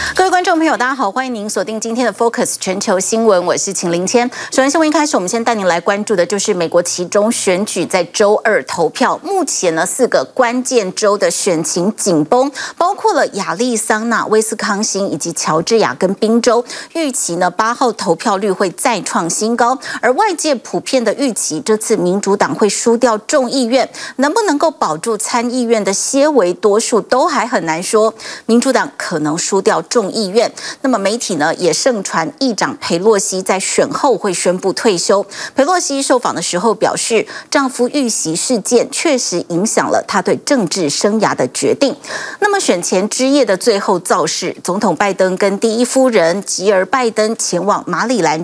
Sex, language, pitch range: female, Chinese, 195-265 Hz